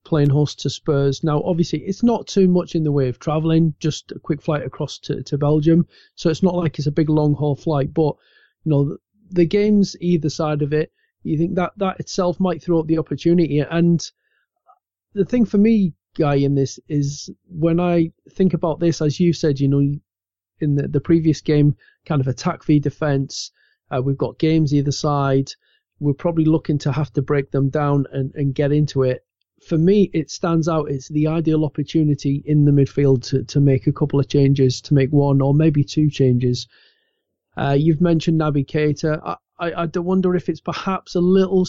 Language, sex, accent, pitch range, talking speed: English, male, British, 145-170 Hz, 200 wpm